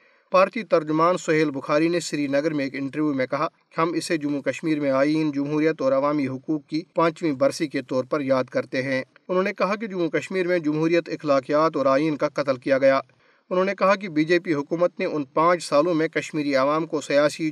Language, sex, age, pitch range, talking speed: Urdu, male, 50-69, 145-180 Hz, 220 wpm